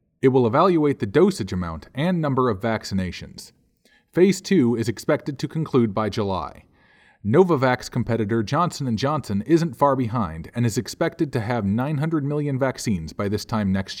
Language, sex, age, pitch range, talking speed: English, male, 40-59, 105-145 Hz, 160 wpm